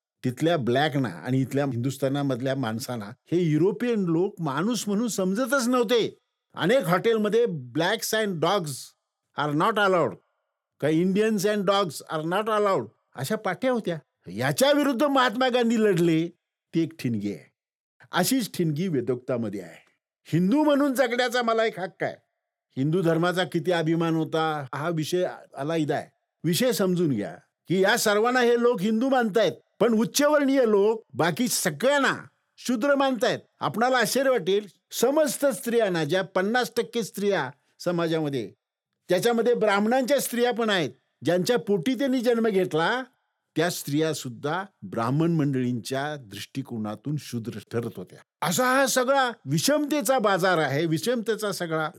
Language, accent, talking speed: Marathi, native, 130 wpm